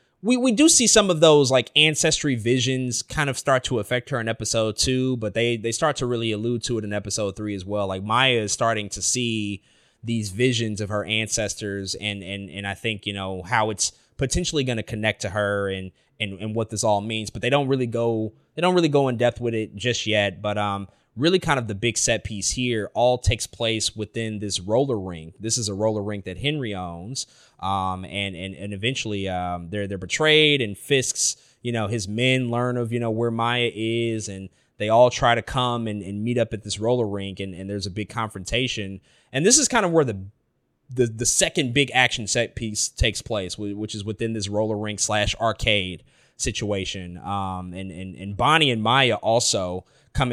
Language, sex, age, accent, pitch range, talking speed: English, male, 20-39, American, 100-125 Hz, 215 wpm